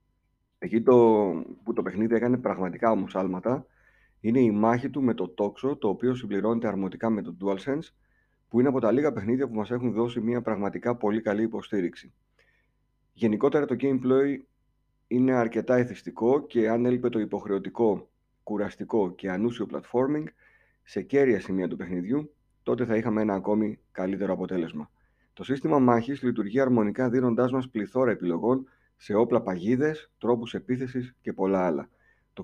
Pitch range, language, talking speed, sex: 105-125 Hz, Greek, 155 wpm, male